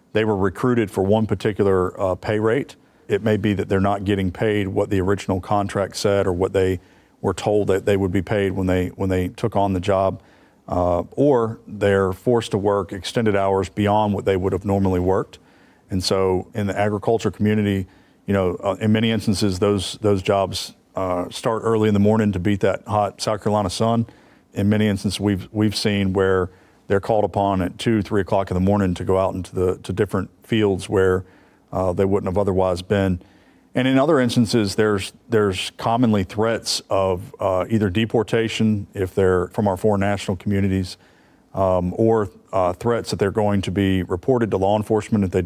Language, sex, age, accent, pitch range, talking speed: English, male, 40-59, American, 95-105 Hz, 195 wpm